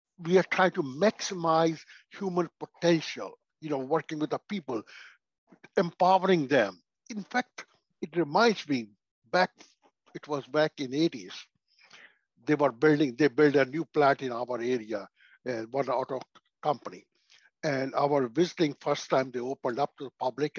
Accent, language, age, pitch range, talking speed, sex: Indian, English, 60-79, 140-185 Hz, 155 wpm, male